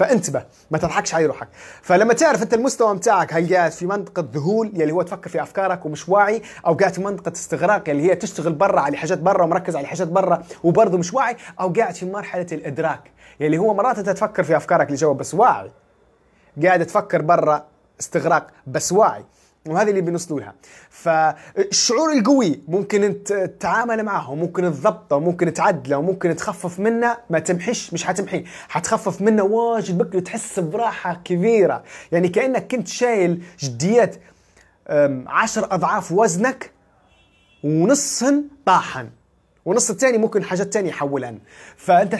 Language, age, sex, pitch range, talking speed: English, 20-39, male, 170-220 Hz, 155 wpm